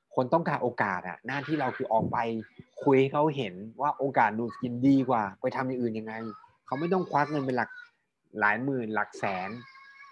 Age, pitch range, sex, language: 20-39, 110-145 Hz, male, Thai